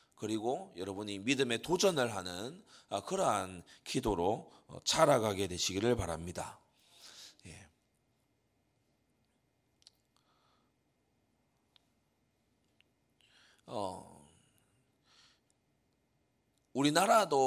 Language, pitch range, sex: Korean, 95-140 Hz, male